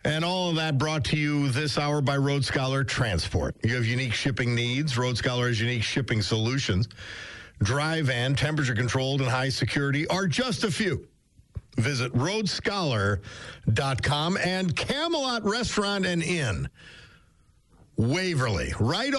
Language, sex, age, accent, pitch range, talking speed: English, male, 50-69, American, 115-175 Hz, 130 wpm